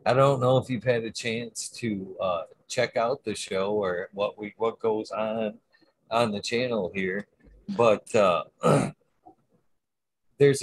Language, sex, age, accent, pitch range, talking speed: English, male, 40-59, American, 105-145 Hz, 150 wpm